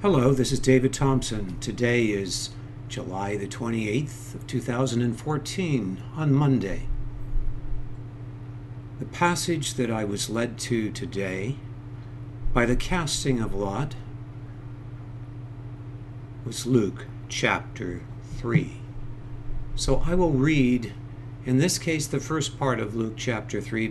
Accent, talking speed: American, 115 wpm